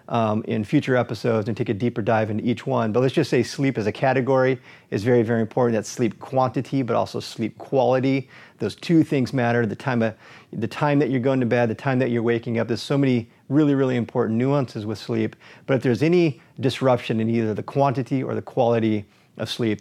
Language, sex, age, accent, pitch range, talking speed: English, male, 30-49, American, 115-145 Hz, 225 wpm